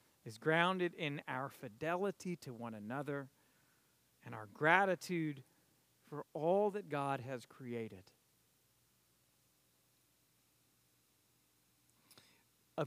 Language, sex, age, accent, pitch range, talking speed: English, male, 40-59, American, 155-240 Hz, 85 wpm